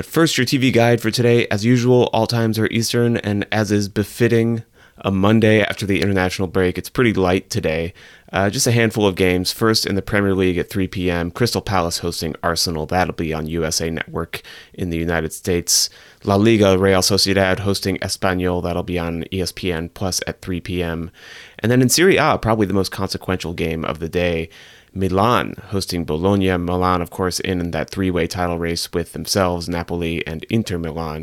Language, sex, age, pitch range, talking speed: English, male, 30-49, 85-105 Hz, 185 wpm